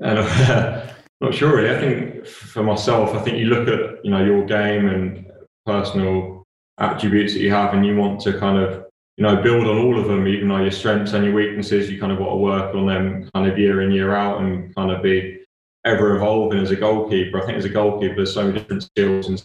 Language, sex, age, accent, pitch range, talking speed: Swedish, male, 20-39, British, 95-100 Hz, 240 wpm